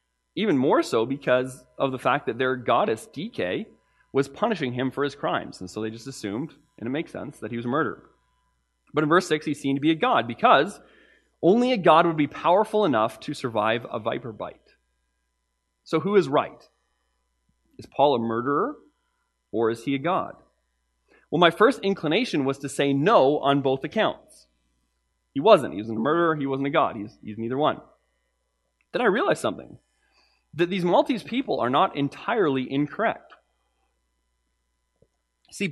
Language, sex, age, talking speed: English, male, 30-49, 175 wpm